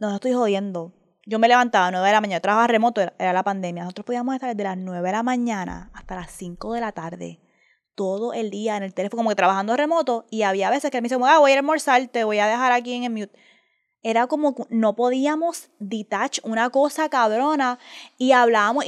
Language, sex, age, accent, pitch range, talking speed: Spanish, female, 20-39, American, 210-255 Hz, 240 wpm